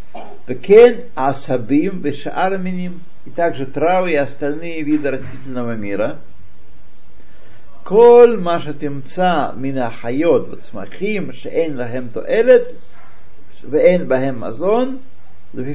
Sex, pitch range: male, 130-180 Hz